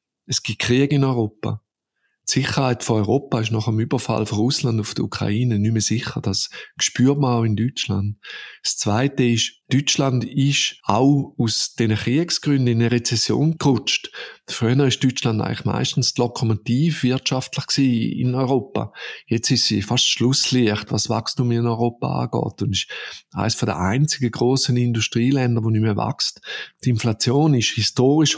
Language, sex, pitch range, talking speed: German, male, 110-135 Hz, 155 wpm